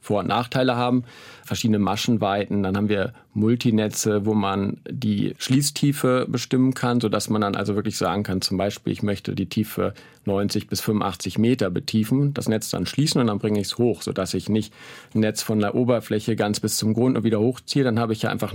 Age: 40-59